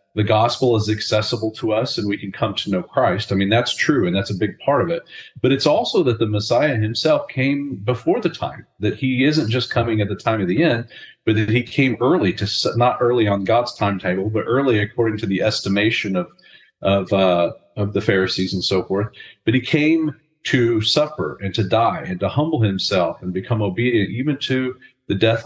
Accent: American